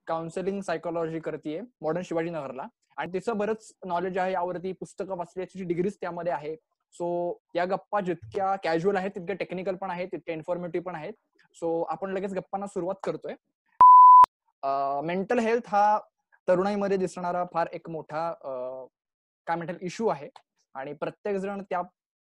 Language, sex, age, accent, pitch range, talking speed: Marathi, male, 20-39, native, 160-195 Hz, 140 wpm